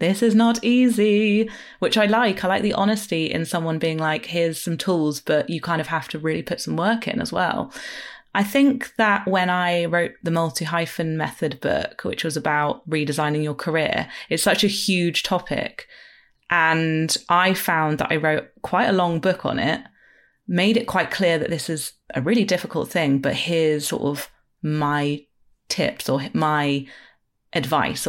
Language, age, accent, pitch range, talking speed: English, 30-49, British, 155-185 Hz, 180 wpm